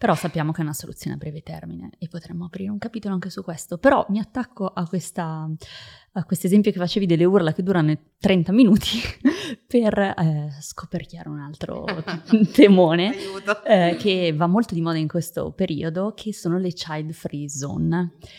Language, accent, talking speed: Italian, native, 170 wpm